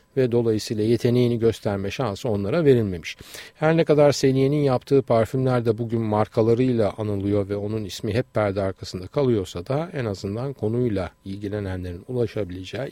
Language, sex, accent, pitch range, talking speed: Turkish, male, native, 105-140 Hz, 140 wpm